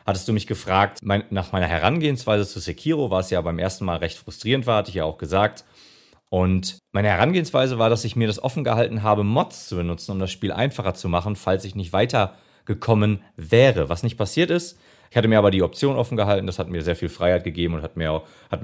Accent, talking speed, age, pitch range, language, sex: German, 230 wpm, 40-59, 85-115 Hz, German, male